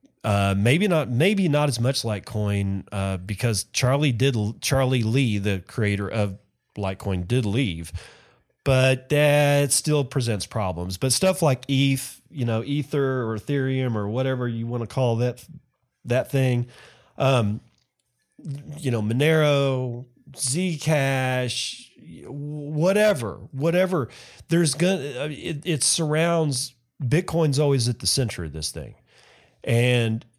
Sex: male